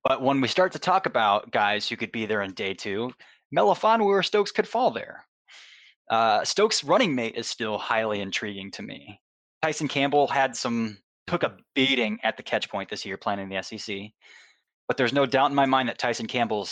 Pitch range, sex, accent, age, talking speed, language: 110-140 Hz, male, American, 20-39, 210 wpm, English